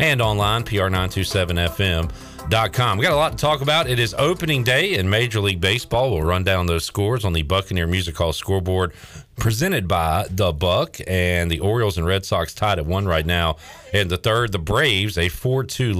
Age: 40-59